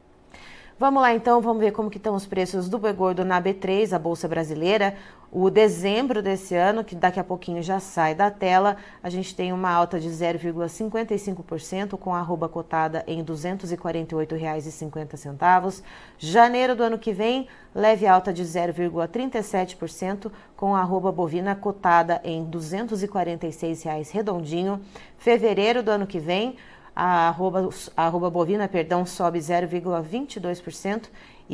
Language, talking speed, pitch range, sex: Portuguese, 140 wpm, 175-215 Hz, female